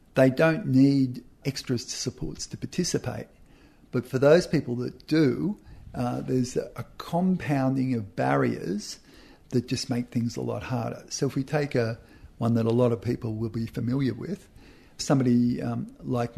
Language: English